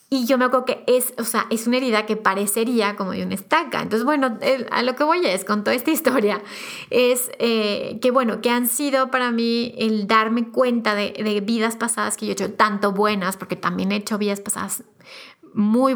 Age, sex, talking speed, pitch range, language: 30-49, female, 220 wpm, 210-255 Hz, Spanish